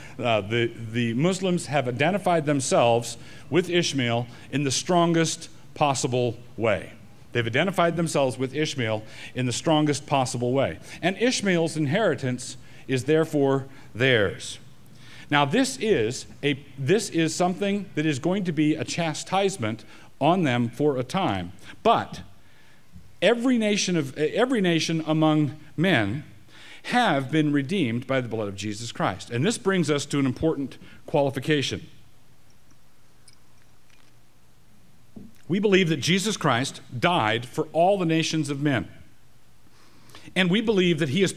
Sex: male